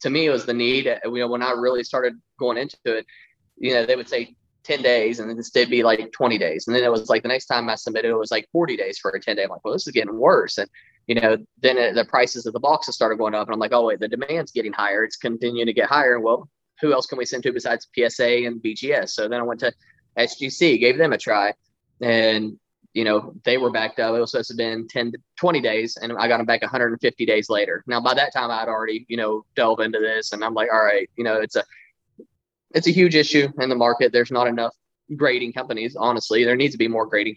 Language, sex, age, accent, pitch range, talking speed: English, male, 20-39, American, 110-125 Hz, 265 wpm